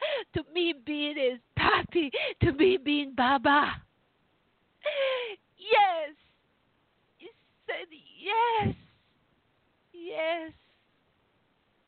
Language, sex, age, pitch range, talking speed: English, female, 20-39, 245-335 Hz, 70 wpm